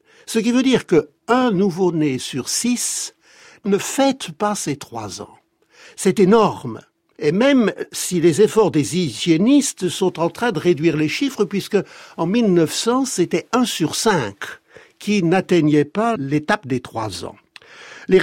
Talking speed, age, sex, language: 150 wpm, 60-79, male, French